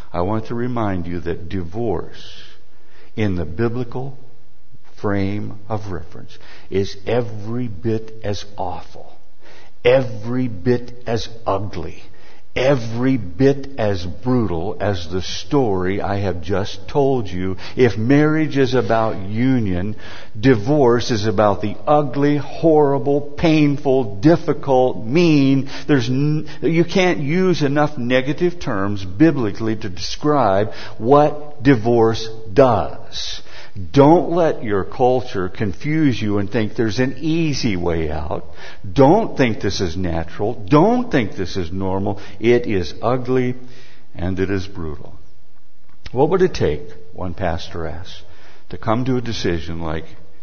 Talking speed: 125 wpm